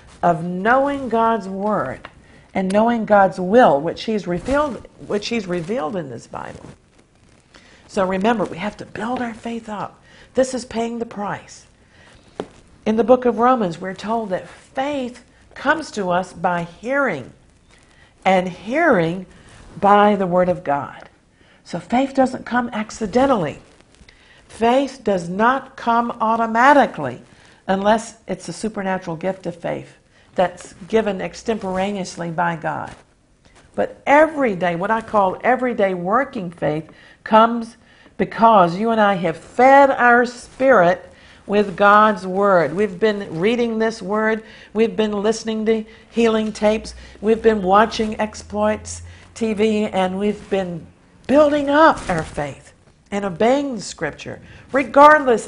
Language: English